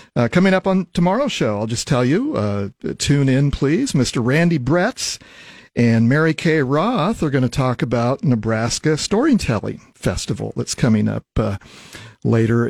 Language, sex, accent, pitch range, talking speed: English, male, American, 115-150 Hz, 160 wpm